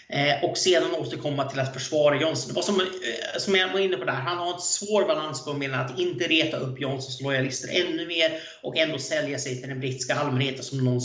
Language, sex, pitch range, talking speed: Swedish, male, 135-185 Hz, 205 wpm